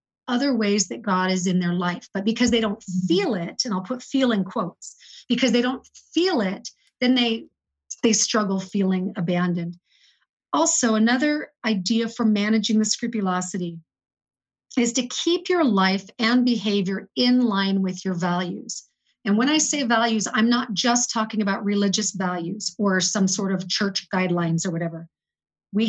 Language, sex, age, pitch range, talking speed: English, female, 40-59, 190-235 Hz, 165 wpm